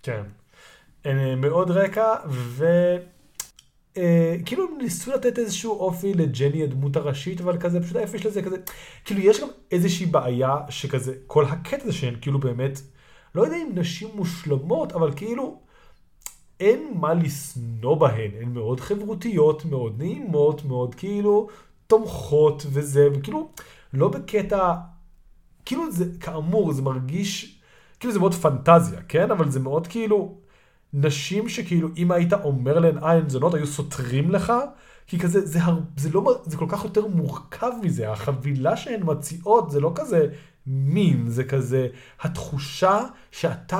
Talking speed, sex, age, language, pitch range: 140 wpm, male, 30-49, Hebrew, 140-190 Hz